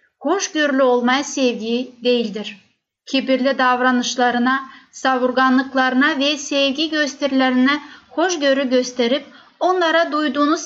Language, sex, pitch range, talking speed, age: Turkish, female, 250-290 Hz, 80 wpm, 30-49